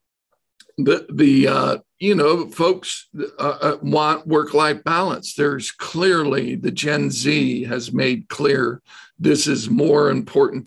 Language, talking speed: English, 125 wpm